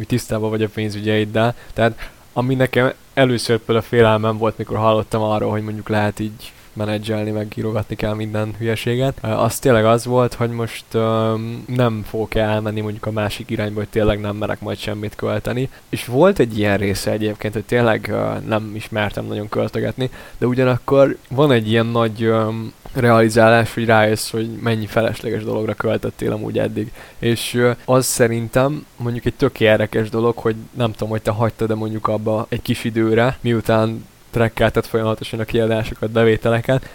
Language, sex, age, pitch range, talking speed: Hungarian, male, 20-39, 110-120 Hz, 160 wpm